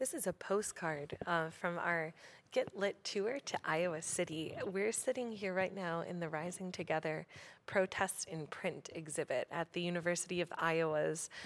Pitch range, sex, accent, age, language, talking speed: 160-185 Hz, female, American, 20-39, English, 160 wpm